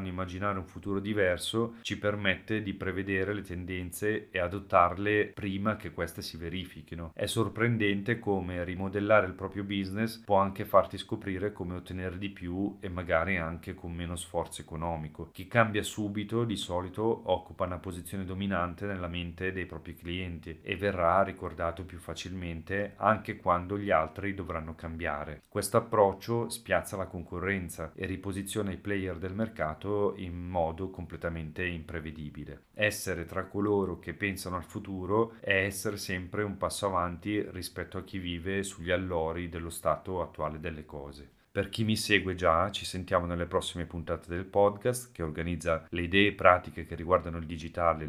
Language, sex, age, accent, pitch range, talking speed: Italian, male, 30-49, native, 85-100 Hz, 155 wpm